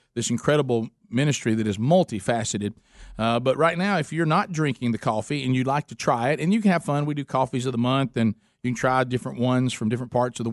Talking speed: 250 wpm